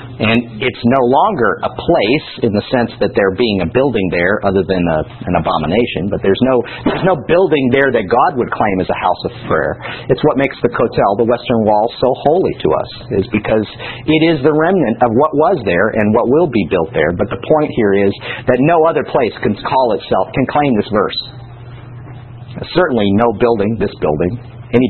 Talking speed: 205 wpm